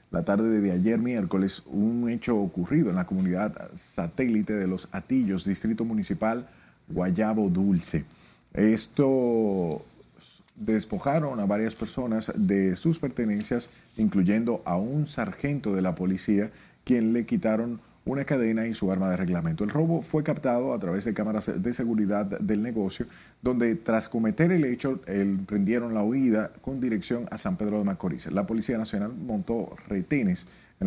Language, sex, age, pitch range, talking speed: Spanish, male, 40-59, 95-120 Hz, 150 wpm